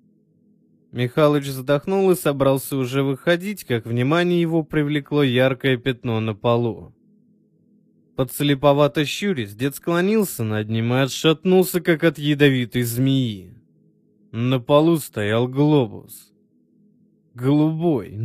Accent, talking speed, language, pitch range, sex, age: native, 100 wpm, Russian, 120-155 Hz, male, 20-39